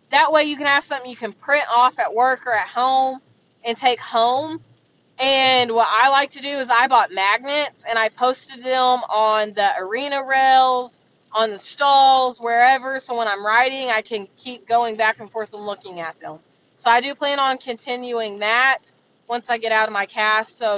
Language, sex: English, female